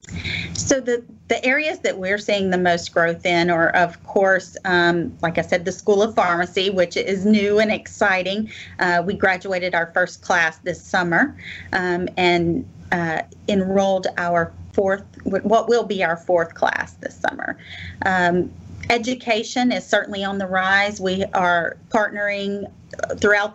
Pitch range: 175-205 Hz